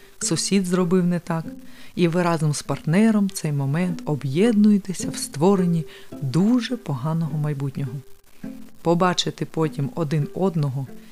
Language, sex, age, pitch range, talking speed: Ukrainian, female, 30-49, 150-205 Hz, 115 wpm